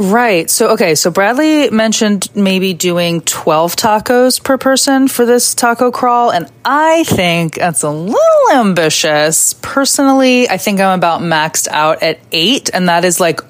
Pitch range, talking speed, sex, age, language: 160-220 Hz, 160 wpm, female, 20-39, English